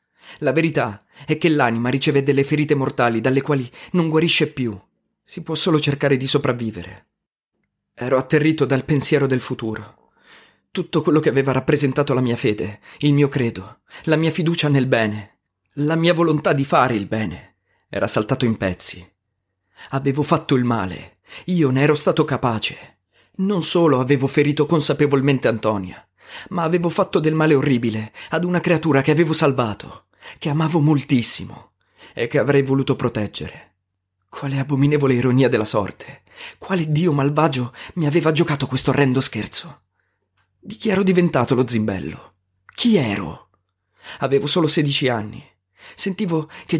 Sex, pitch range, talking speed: male, 110-155 Hz, 150 wpm